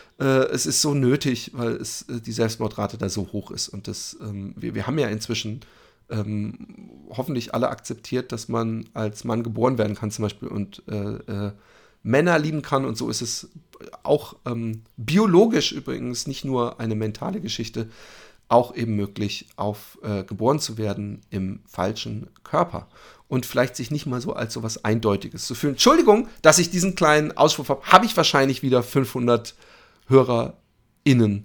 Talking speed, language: 170 wpm, German